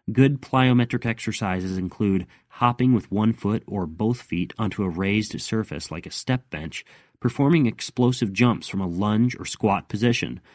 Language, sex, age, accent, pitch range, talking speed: English, male, 30-49, American, 100-125 Hz, 160 wpm